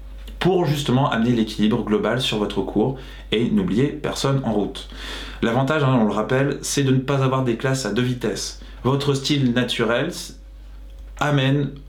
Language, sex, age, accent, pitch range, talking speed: English, male, 20-39, French, 115-145 Hz, 155 wpm